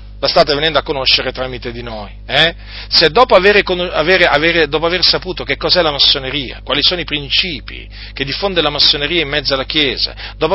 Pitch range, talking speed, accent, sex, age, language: 105-155 Hz, 195 wpm, native, male, 40-59, Italian